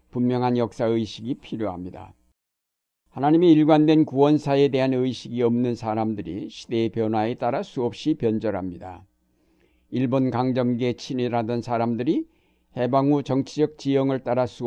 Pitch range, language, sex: 110-130 Hz, Korean, male